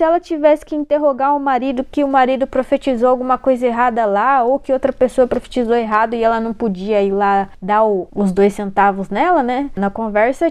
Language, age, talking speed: Portuguese, 20-39, 200 wpm